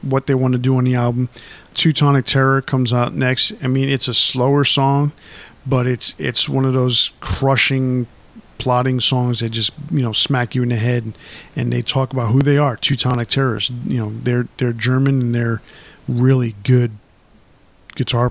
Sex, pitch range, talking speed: male, 120-135 Hz, 185 wpm